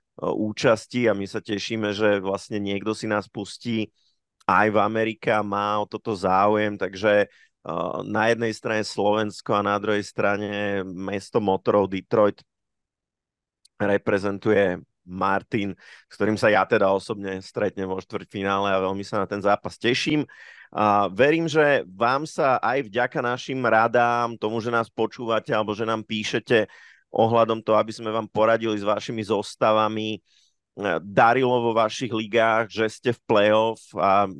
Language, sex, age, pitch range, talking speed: Slovak, male, 30-49, 100-110 Hz, 145 wpm